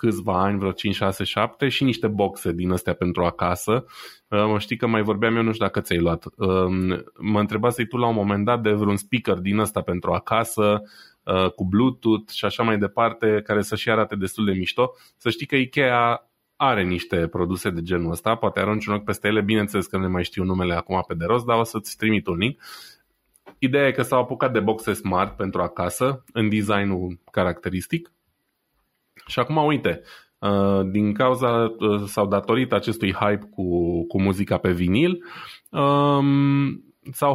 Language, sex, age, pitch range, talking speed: Romanian, male, 20-39, 95-125 Hz, 180 wpm